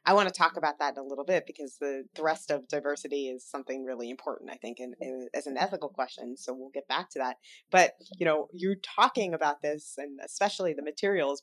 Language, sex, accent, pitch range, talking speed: English, female, American, 150-200 Hz, 220 wpm